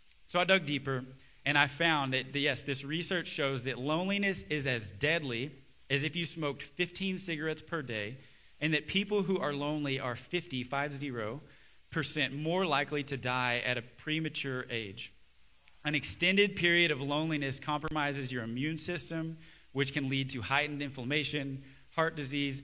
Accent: American